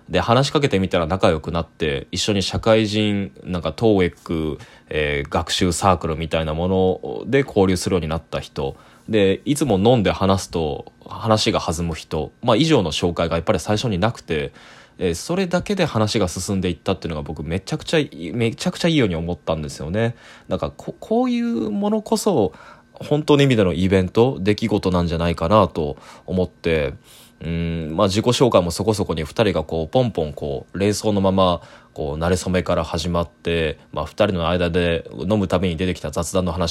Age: 20-39